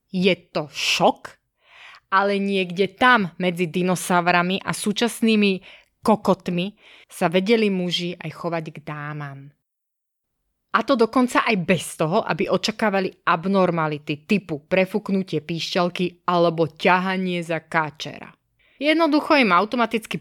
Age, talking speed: 20-39, 110 wpm